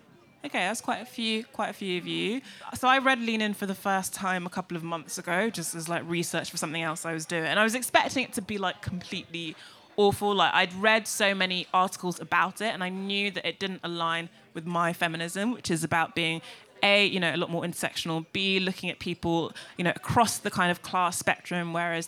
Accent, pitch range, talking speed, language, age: British, 170-205 Hz, 235 wpm, English, 20-39